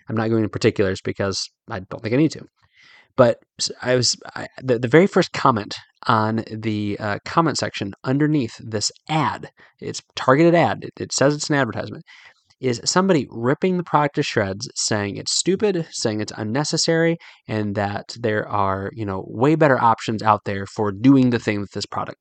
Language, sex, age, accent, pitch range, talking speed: English, male, 20-39, American, 110-155 Hz, 185 wpm